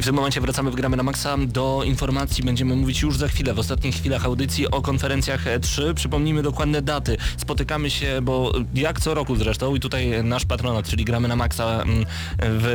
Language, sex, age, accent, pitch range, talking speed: Polish, male, 20-39, native, 110-130 Hz, 200 wpm